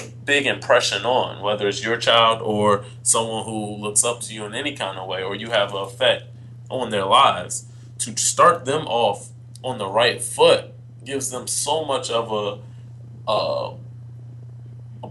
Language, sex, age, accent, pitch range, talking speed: English, male, 20-39, American, 110-120 Hz, 170 wpm